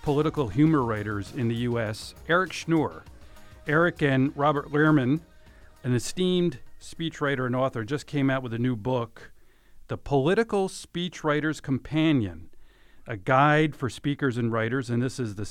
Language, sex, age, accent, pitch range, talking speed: English, male, 40-59, American, 115-145 Hz, 145 wpm